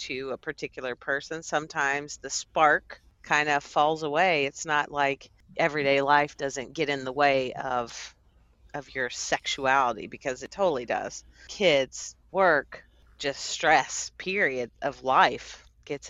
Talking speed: 140 wpm